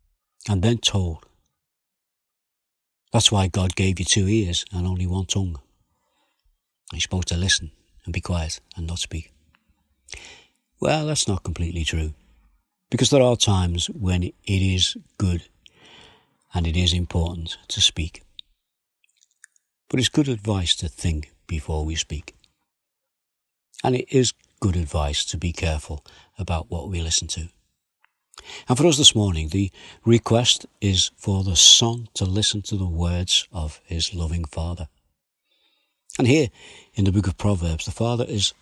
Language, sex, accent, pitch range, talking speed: English, male, British, 80-100 Hz, 150 wpm